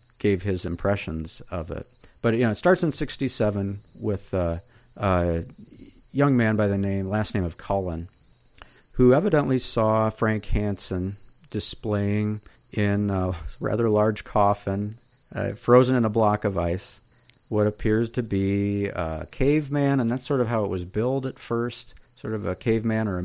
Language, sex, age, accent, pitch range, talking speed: English, male, 50-69, American, 90-120 Hz, 165 wpm